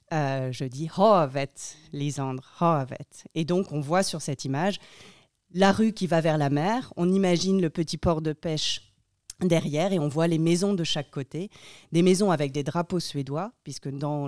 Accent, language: French, French